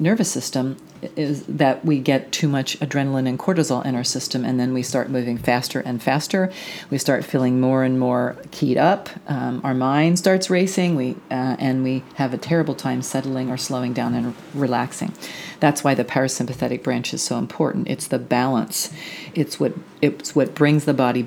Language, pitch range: English, 125-145 Hz